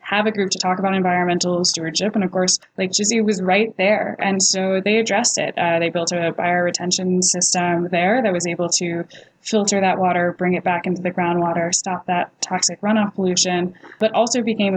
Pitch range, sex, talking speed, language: 170-190 Hz, female, 200 wpm, English